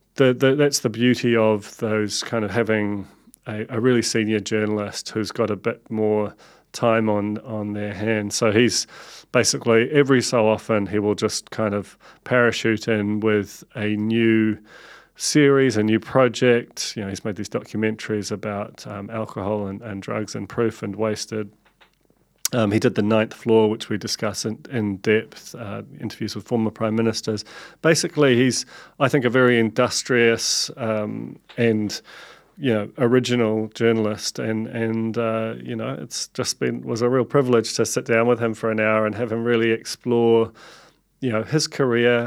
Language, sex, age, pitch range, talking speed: English, male, 30-49, 105-120 Hz, 170 wpm